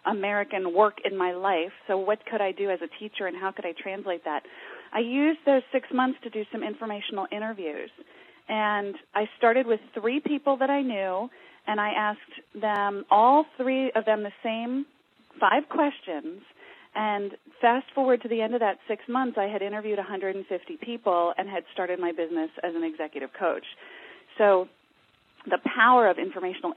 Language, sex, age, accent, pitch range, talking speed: English, female, 30-49, American, 180-240 Hz, 175 wpm